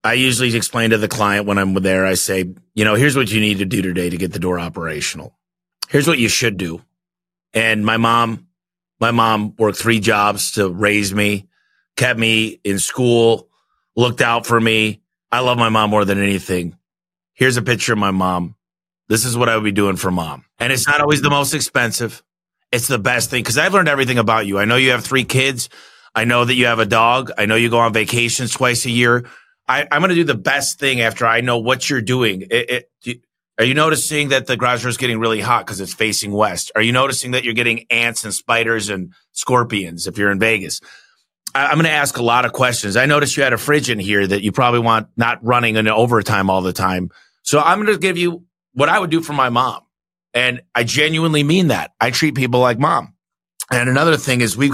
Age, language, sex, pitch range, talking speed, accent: 30-49, English, male, 105-135 Hz, 230 wpm, American